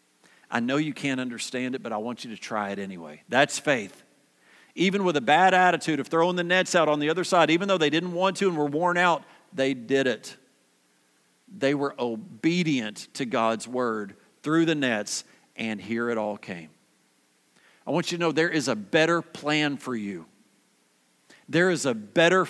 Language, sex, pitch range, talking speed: English, male, 105-175 Hz, 195 wpm